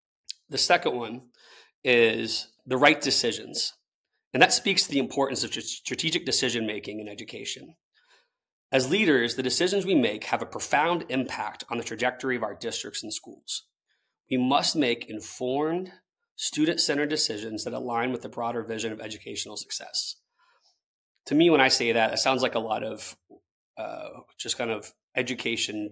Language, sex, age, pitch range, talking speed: English, male, 30-49, 110-135 Hz, 155 wpm